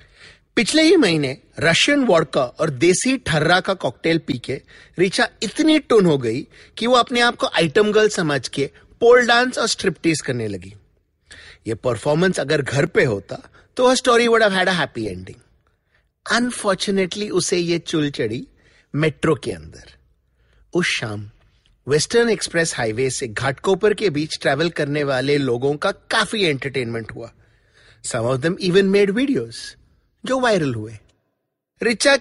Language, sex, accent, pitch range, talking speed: English, male, Indian, 130-215 Hz, 115 wpm